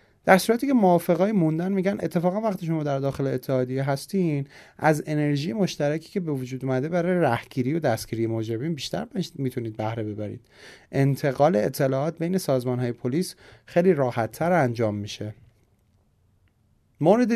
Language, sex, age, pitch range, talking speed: Persian, male, 30-49, 115-165 Hz, 135 wpm